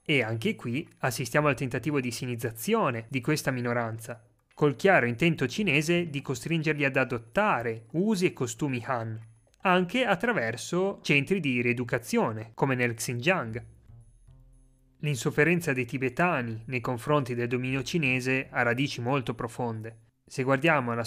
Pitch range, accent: 120-160 Hz, native